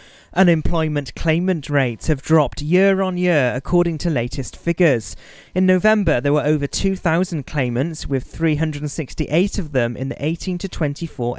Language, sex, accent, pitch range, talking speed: English, male, British, 135-170 Hz, 150 wpm